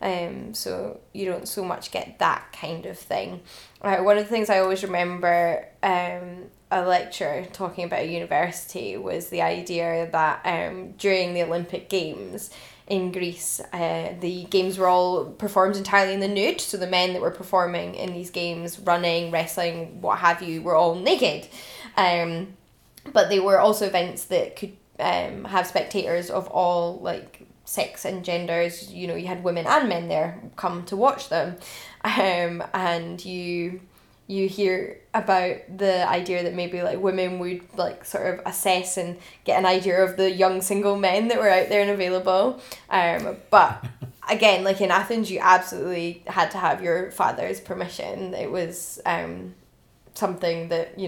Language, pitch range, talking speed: English, 175-190 Hz, 170 wpm